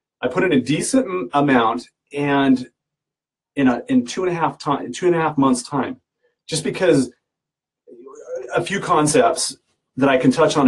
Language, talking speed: English, 185 wpm